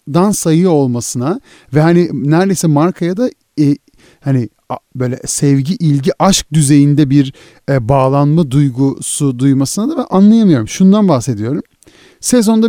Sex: male